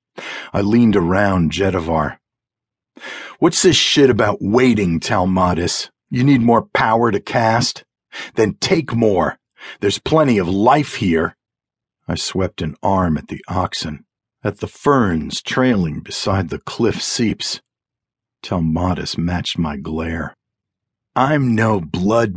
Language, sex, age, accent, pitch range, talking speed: English, male, 50-69, American, 95-140 Hz, 125 wpm